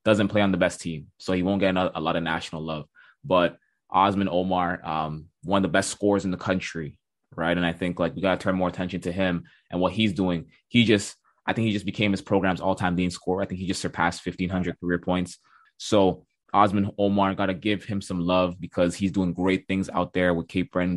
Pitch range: 90-100 Hz